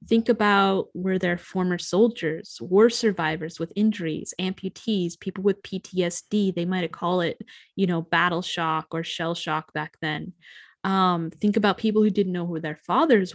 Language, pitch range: English, 170-200 Hz